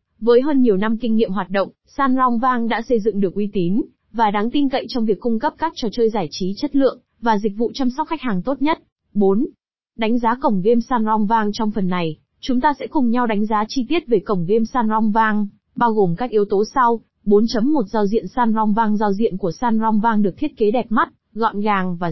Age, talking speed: 20-39, 230 wpm